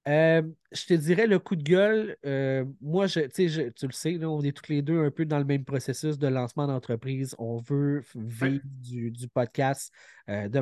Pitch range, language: 125-145 Hz, French